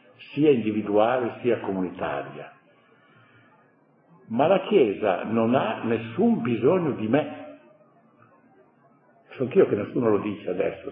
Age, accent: 60-79, native